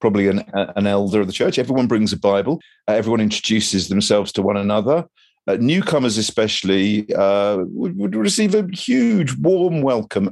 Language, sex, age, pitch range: English, male, 50-69, 105-165 Hz